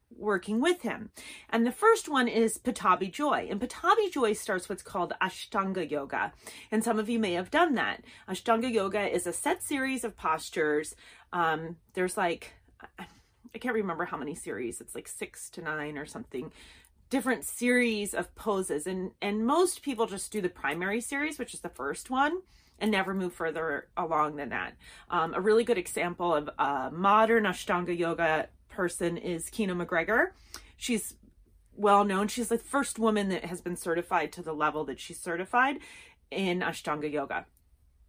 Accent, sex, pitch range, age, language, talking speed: American, female, 170-240 Hz, 30-49, English, 170 wpm